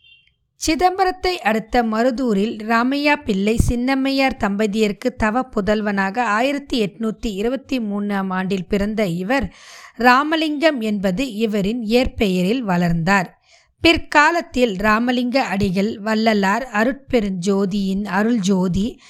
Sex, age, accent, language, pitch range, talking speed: female, 20-39, native, Tamil, 205-255 Hz, 90 wpm